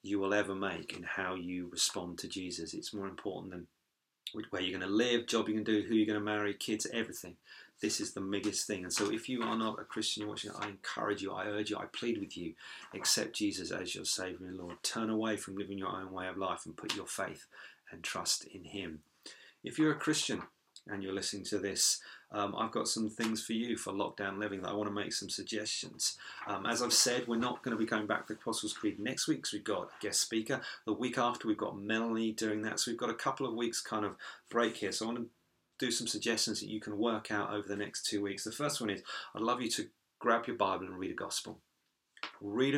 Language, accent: English, British